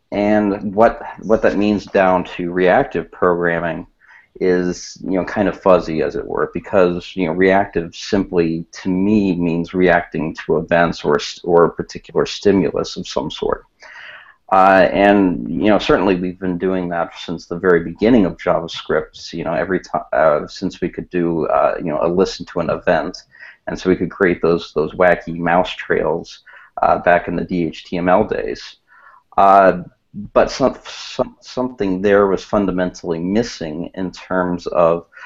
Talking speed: 165 wpm